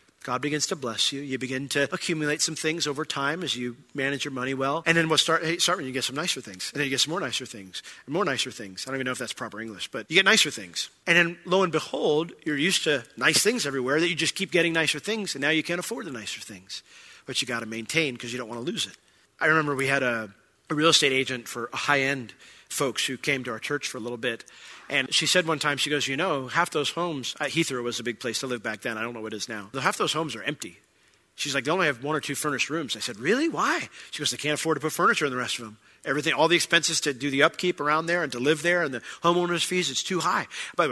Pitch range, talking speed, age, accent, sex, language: 125-160 Hz, 290 wpm, 40-59, American, male, English